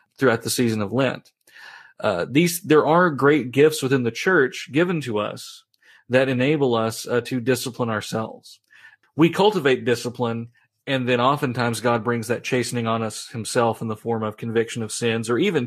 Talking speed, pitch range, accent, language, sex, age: 175 wpm, 115-140 Hz, American, English, male, 40-59